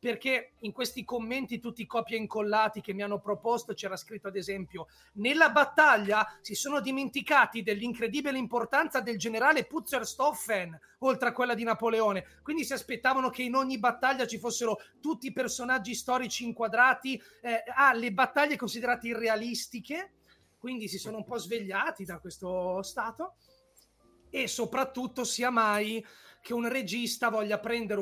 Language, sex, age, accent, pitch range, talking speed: Italian, male, 30-49, native, 200-250 Hz, 150 wpm